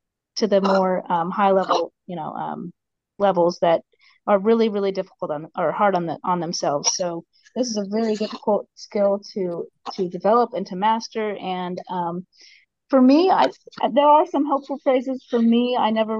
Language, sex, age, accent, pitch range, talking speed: English, female, 30-49, American, 185-220 Hz, 185 wpm